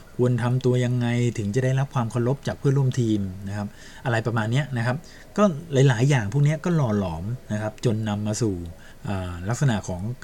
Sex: male